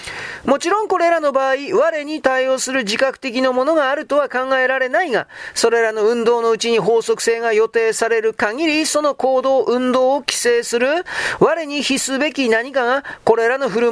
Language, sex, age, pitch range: Japanese, male, 40-59, 245-295 Hz